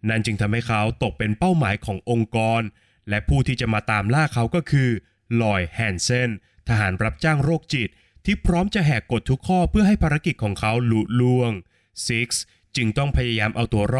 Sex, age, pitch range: male, 20-39, 100-135 Hz